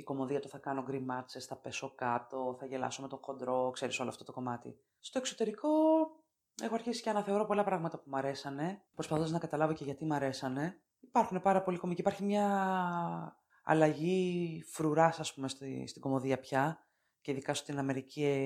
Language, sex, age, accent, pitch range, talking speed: Greek, female, 20-39, native, 135-170 Hz, 175 wpm